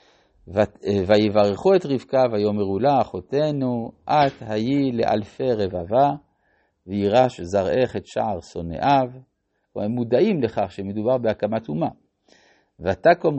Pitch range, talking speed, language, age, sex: 105-155 Hz, 105 wpm, Hebrew, 50-69, male